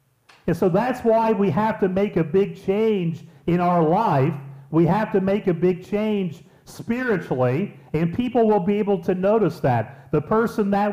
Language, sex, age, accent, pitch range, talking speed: English, male, 40-59, American, 140-195 Hz, 180 wpm